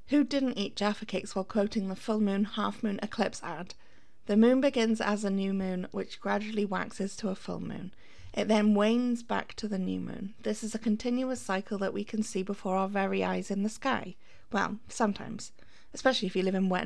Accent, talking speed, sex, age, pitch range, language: British, 215 wpm, female, 30-49, 195-235 Hz, English